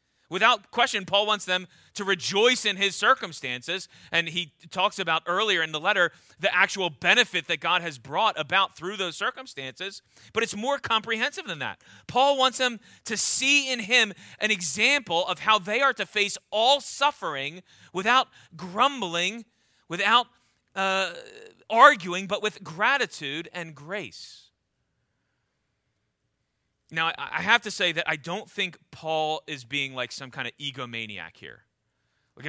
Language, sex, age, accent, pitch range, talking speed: English, male, 30-49, American, 150-215 Hz, 150 wpm